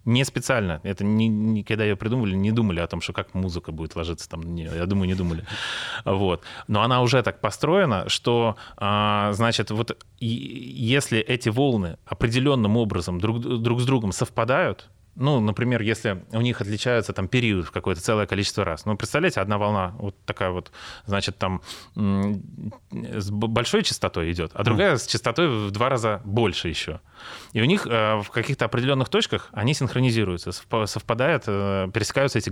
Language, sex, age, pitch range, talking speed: Russian, male, 30-49, 95-115 Hz, 170 wpm